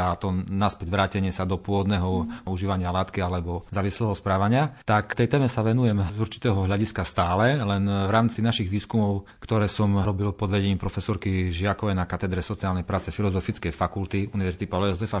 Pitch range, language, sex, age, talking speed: 95-110 Hz, Slovak, male, 40-59, 165 wpm